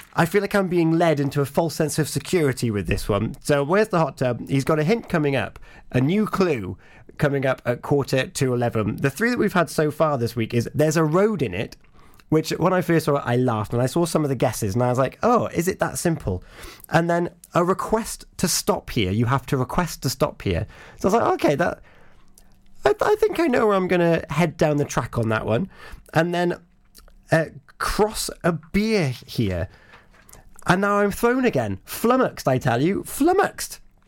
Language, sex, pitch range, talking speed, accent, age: English, male, 120-170 Hz, 225 wpm, British, 30-49